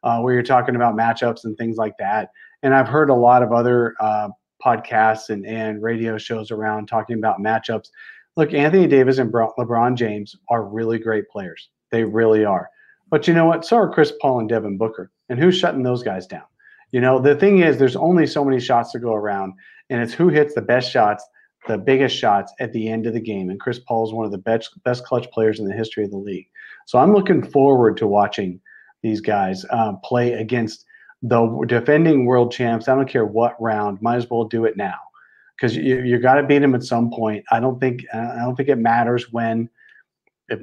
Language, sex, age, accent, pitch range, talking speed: English, male, 40-59, American, 110-130 Hz, 220 wpm